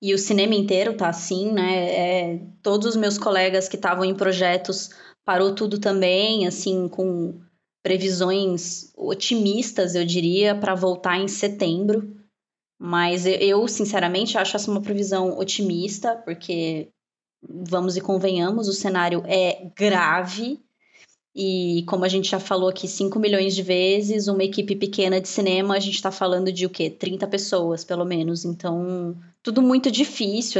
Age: 20-39